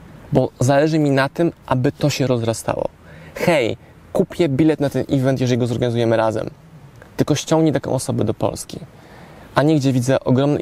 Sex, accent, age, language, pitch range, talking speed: male, native, 20-39, Polish, 115-145 Hz, 170 wpm